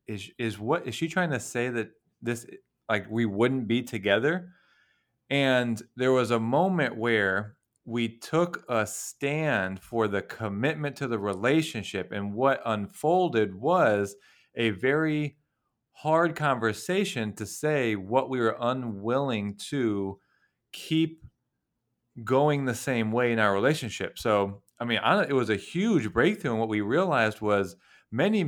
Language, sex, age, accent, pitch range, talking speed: English, male, 30-49, American, 110-145 Hz, 145 wpm